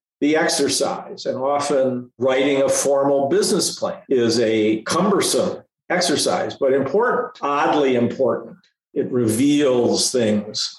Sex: male